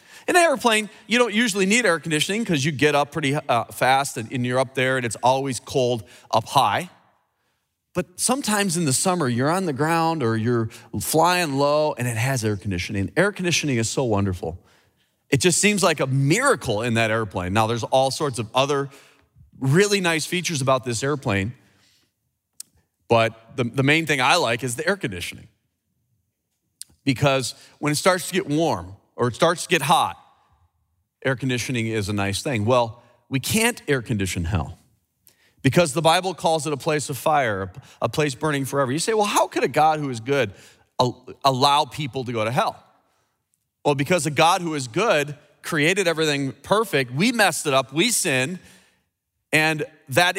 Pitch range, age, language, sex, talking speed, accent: 120-160 Hz, 30-49, English, male, 185 wpm, American